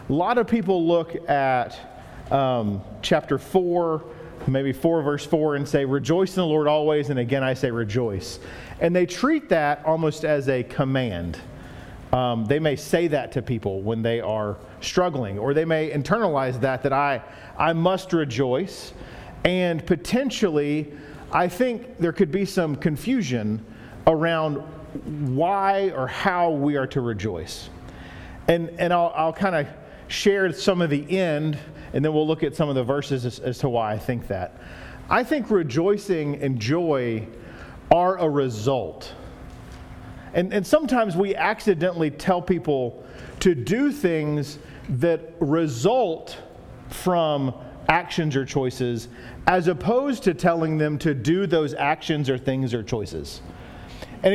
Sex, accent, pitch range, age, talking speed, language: male, American, 130-180 Hz, 40-59, 150 wpm, English